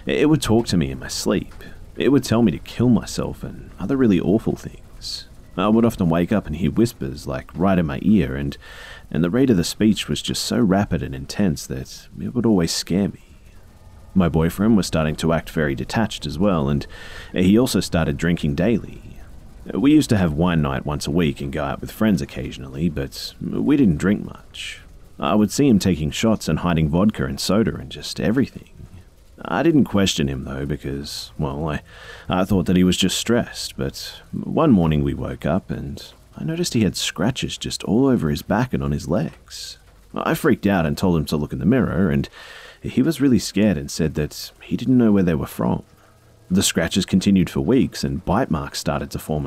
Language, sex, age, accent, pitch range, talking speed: English, male, 40-59, Australian, 75-100 Hz, 210 wpm